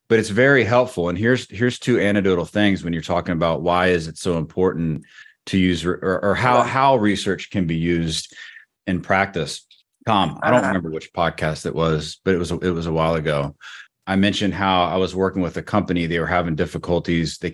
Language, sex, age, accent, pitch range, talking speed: English, male, 30-49, American, 85-105 Hz, 210 wpm